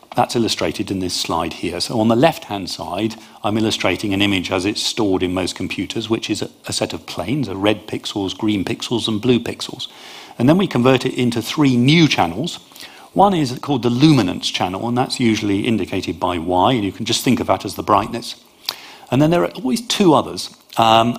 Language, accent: English, British